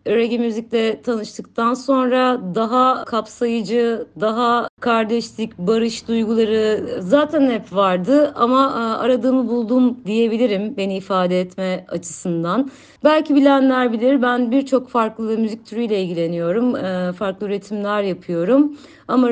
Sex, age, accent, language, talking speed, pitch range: female, 30-49, native, Turkish, 105 wpm, 200-255 Hz